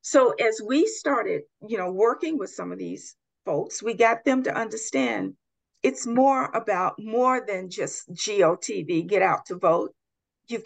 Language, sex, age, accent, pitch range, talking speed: English, female, 50-69, American, 210-300 Hz, 165 wpm